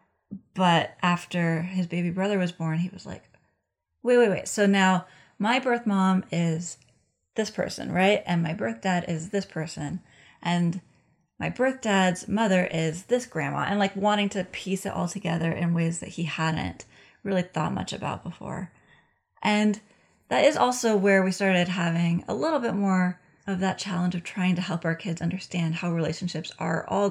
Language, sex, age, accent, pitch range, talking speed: English, female, 30-49, American, 165-200 Hz, 180 wpm